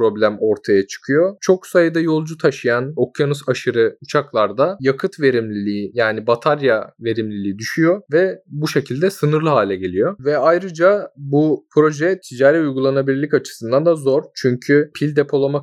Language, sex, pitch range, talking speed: Turkish, male, 130-165 Hz, 130 wpm